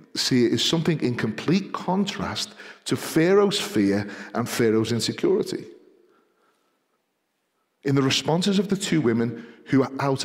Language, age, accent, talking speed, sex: English, 40-59, British, 135 wpm, male